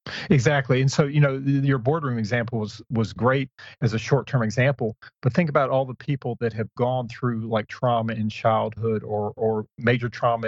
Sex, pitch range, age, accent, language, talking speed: male, 110-135 Hz, 40-59, American, English, 195 wpm